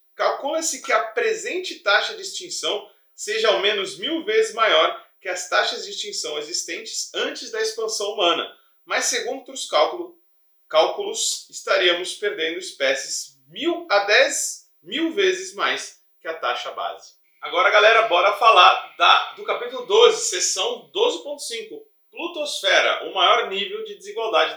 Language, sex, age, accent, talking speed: Portuguese, male, 40-59, Brazilian, 135 wpm